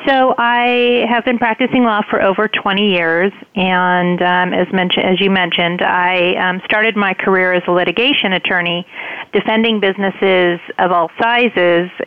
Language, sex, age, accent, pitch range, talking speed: English, female, 40-59, American, 175-205 Hz, 155 wpm